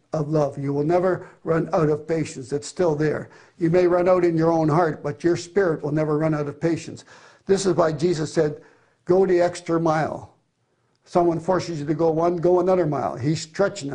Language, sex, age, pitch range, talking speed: English, male, 60-79, 160-185 Hz, 205 wpm